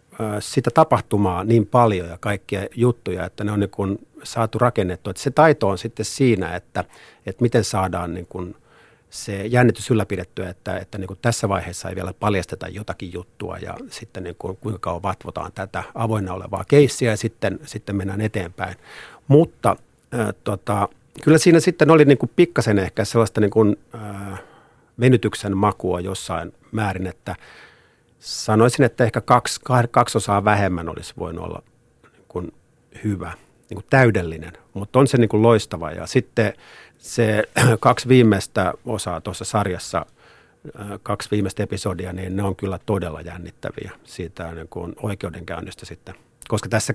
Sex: male